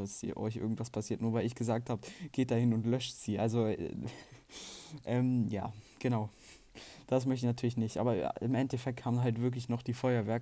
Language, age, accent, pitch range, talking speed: German, 20-39, German, 110-125 Hz, 195 wpm